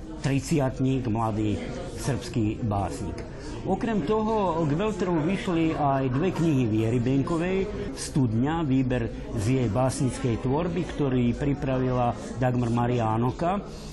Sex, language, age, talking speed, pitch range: male, Slovak, 50-69, 105 wpm, 125-165 Hz